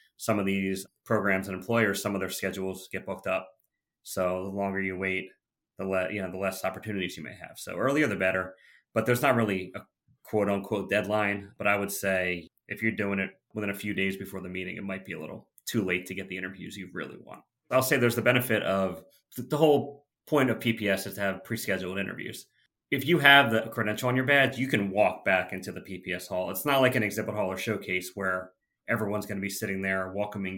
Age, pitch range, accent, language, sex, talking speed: 30-49, 95-110 Hz, American, English, male, 225 wpm